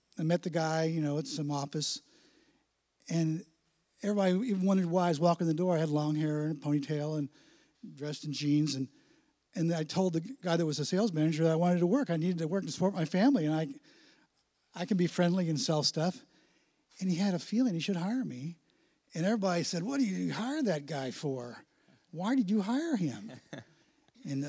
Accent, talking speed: American, 220 wpm